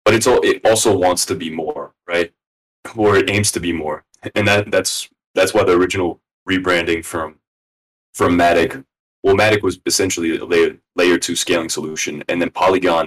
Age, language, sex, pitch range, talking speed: 20-39, English, male, 85-115 Hz, 185 wpm